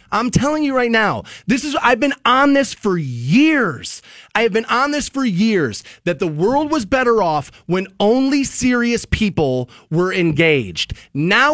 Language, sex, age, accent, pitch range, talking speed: English, male, 30-49, American, 170-235 Hz, 170 wpm